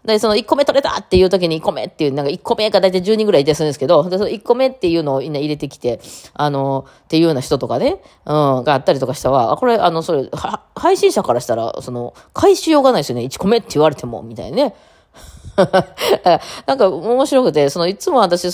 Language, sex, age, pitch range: Japanese, female, 20-39, 125-195 Hz